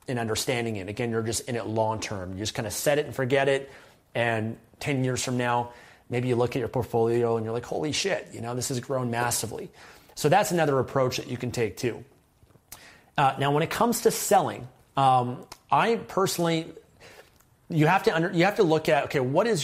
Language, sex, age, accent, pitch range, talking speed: English, male, 30-49, American, 115-140 Hz, 215 wpm